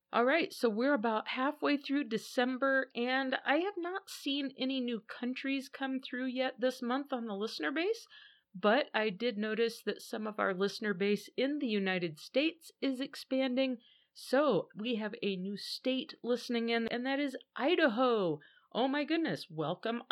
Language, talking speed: English, 165 wpm